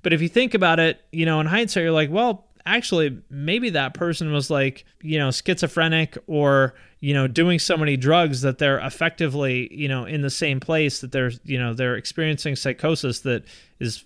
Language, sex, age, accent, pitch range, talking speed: English, male, 30-49, American, 135-165 Hz, 205 wpm